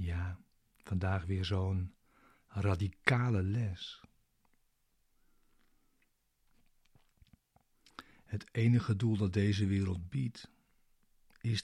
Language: Dutch